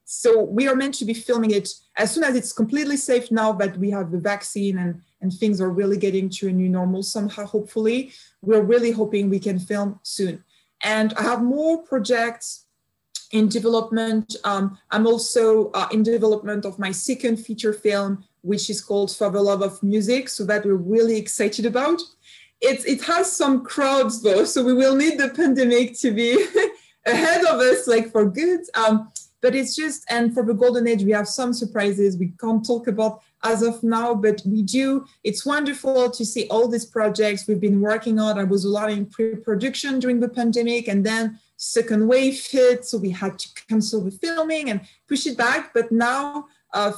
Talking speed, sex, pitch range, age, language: 195 wpm, female, 205-245 Hz, 20-39, English